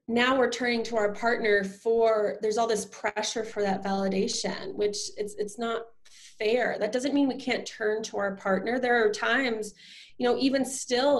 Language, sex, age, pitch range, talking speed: English, female, 20-39, 205-260 Hz, 190 wpm